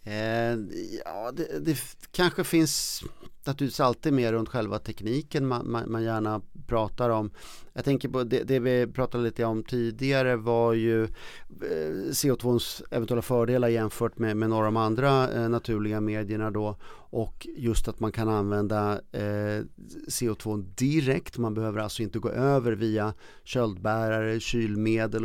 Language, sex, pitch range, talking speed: Swedish, male, 110-125 Hz, 150 wpm